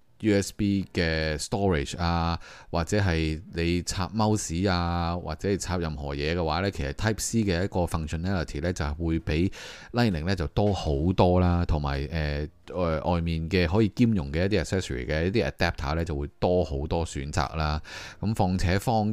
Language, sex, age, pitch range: Chinese, male, 20-39, 80-105 Hz